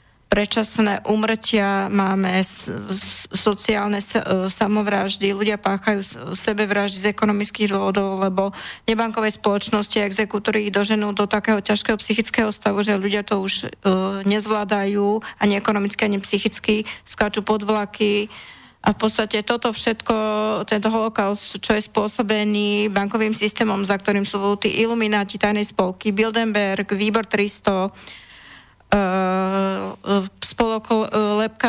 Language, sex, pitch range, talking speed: Slovak, female, 200-220 Hz, 110 wpm